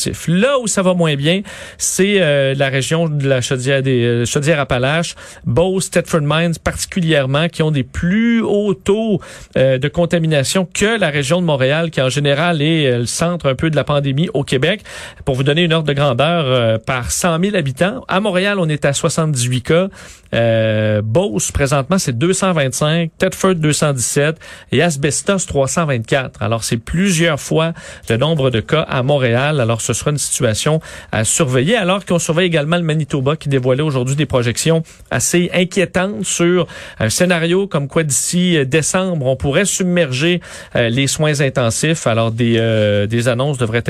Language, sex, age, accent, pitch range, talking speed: French, male, 40-59, Canadian, 135-180 Hz, 165 wpm